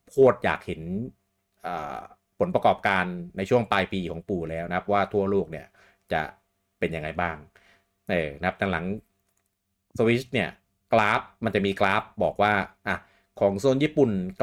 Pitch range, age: 85-105 Hz, 30-49